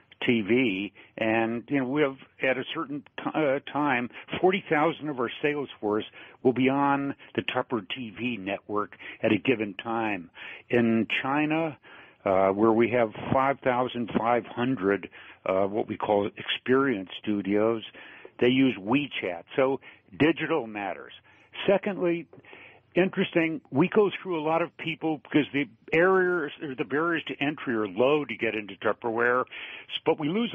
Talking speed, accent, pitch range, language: 145 wpm, American, 115-155 Hz, English